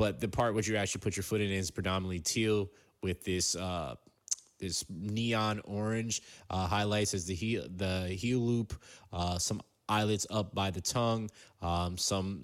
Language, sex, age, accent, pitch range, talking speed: English, male, 20-39, American, 90-105 Hz, 175 wpm